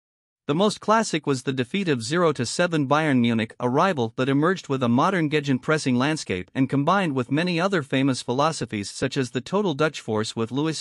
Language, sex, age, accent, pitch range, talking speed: English, male, 50-69, American, 130-175 Hz, 195 wpm